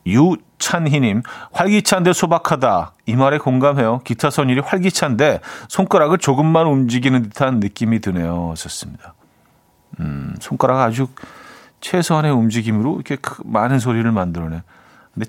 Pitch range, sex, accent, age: 105-145 Hz, male, native, 40-59